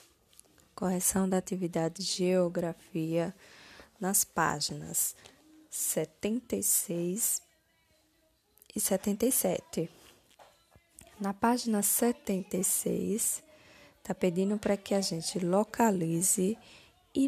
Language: Portuguese